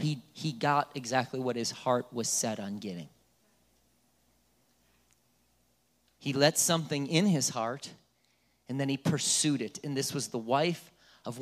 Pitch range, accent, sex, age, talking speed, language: 115-170 Hz, American, male, 30-49, 145 wpm, English